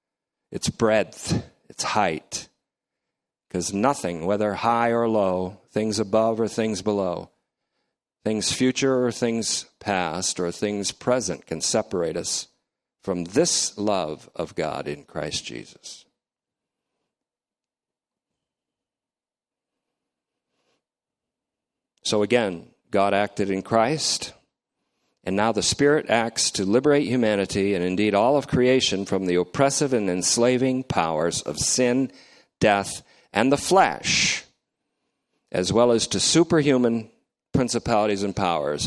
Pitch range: 100-130 Hz